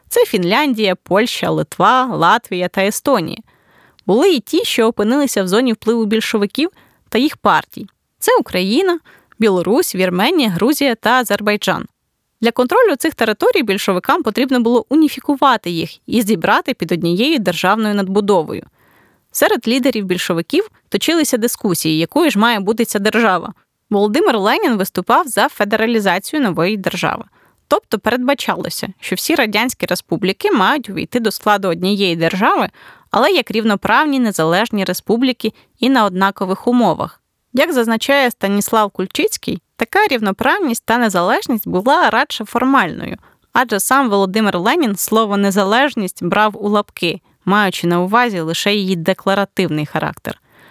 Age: 20-39